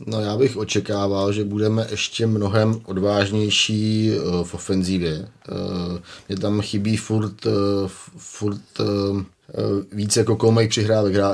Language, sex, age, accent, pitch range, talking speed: Czech, male, 30-49, native, 100-105 Hz, 115 wpm